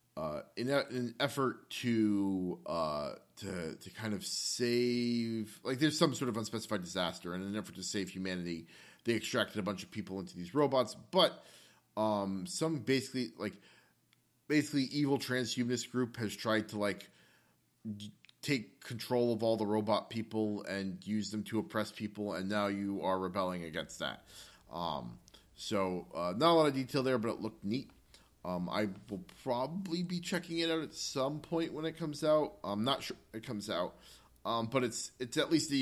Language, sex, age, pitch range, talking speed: English, male, 30-49, 100-130 Hz, 185 wpm